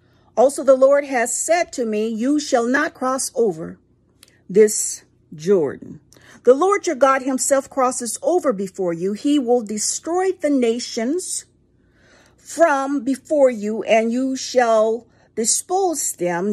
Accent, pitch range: American, 225-305 Hz